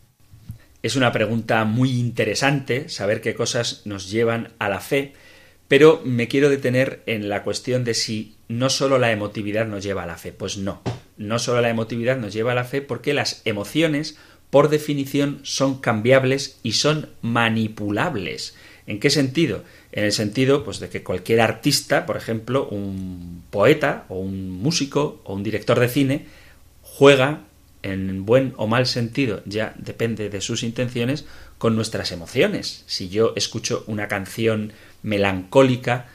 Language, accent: Spanish, Spanish